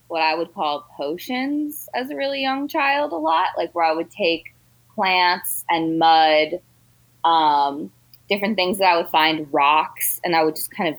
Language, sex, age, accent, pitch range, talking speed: English, female, 20-39, American, 145-165 Hz, 185 wpm